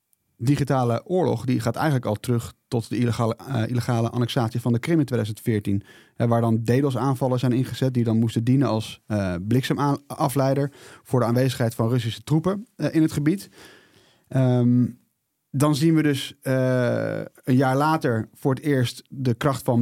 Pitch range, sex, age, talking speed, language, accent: 120-150 Hz, male, 30-49, 165 wpm, Dutch, Dutch